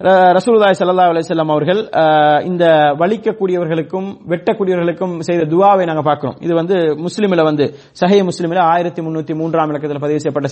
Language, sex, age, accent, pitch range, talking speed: English, male, 30-49, Indian, 155-200 Hz, 145 wpm